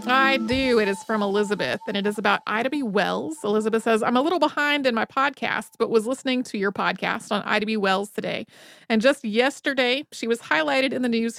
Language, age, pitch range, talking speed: English, 30-49, 210-260 Hz, 220 wpm